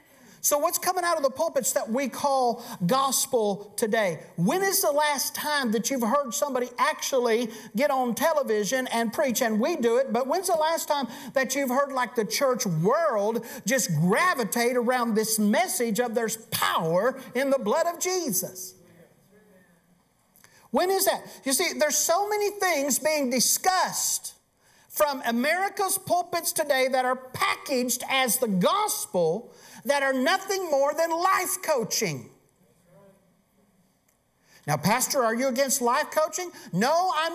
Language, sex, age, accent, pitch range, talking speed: English, male, 50-69, American, 220-320 Hz, 150 wpm